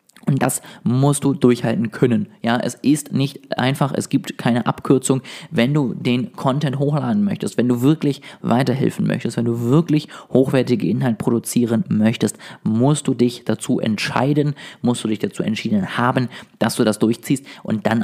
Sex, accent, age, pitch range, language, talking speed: male, German, 20-39, 115-160 Hz, German, 165 wpm